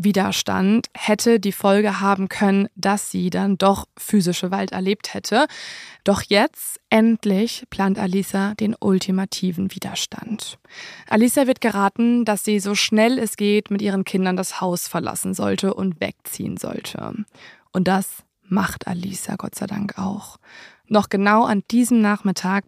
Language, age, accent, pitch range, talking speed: German, 20-39, German, 195-220 Hz, 145 wpm